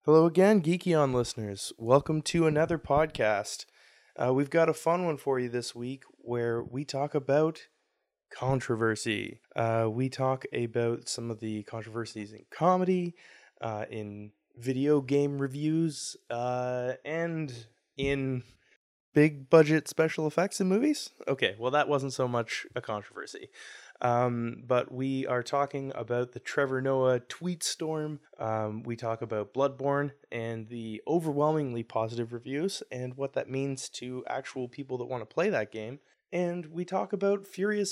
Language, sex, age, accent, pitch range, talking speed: English, male, 20-39, American, 120-155 Hz, 150 wpm